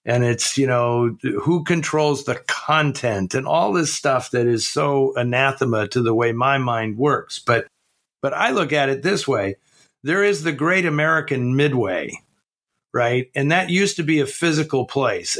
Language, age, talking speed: English, 50-69, 175 wpm